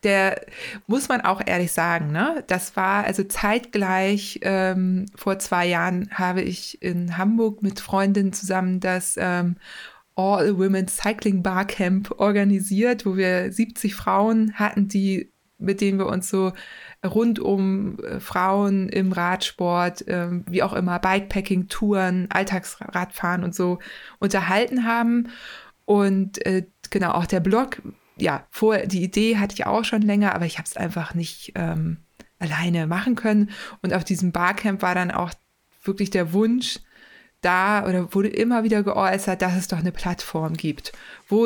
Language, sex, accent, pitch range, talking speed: German, female, German, 185-210 Hz, 150 wpm